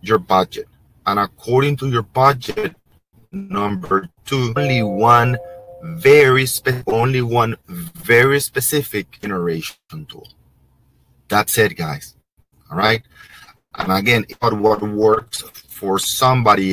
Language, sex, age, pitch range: English, male, 30-49, 95-130 Hz